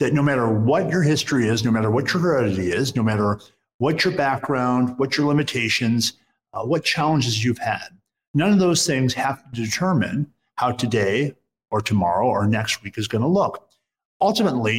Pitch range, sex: 115-150 Hz, male